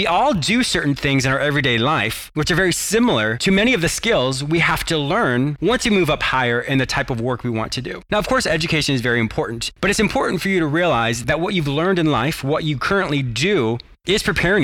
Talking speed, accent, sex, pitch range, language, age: 255 wpm, American, male, 125-175 Hz, English, 30-49